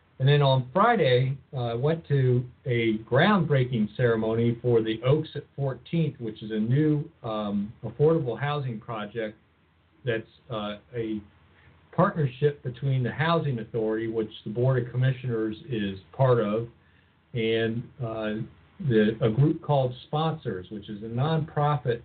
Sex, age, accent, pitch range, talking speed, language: male, 50-69, American, 105-130 Hz, 135 wpm, English